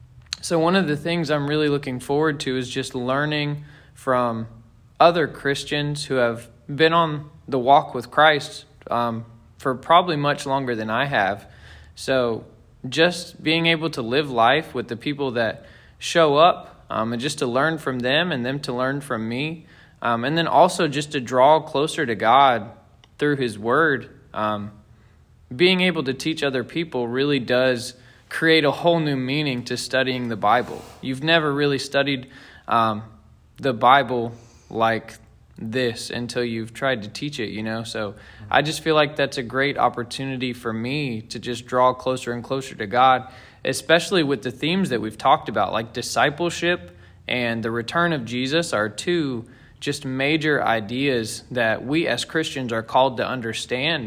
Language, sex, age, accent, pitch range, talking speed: English, male, 20-39, American, 115-145 Hz, 170 wpm